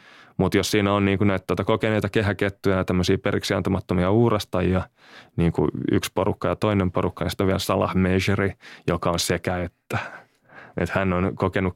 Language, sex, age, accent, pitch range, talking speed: Finnish, male, 20-39, native, 90-105 Hz, 165 wpm